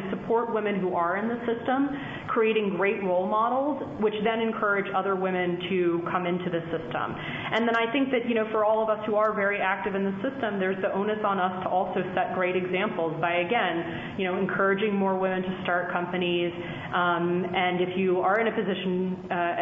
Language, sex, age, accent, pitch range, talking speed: English, female, 30-49, American, 180-210 Hz, 210 wpm